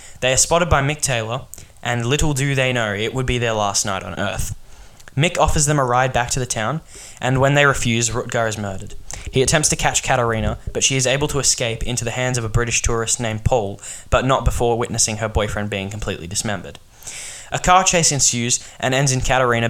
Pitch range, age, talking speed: 105-130 Hz, 10-29, 220 wpm